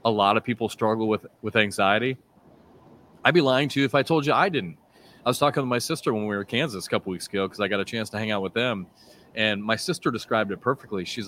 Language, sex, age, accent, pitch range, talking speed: English, male, 30-49, American, 105-135 Hz, 270 wpm